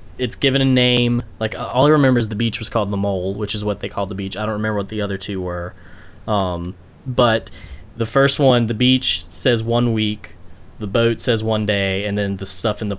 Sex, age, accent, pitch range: male, 10-29, American, 100-125 Hz